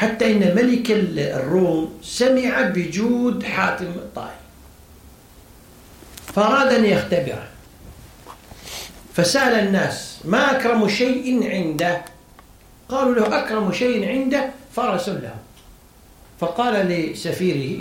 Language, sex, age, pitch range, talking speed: Arabic, male, 60-79, 140-230 Hz, 90 wpm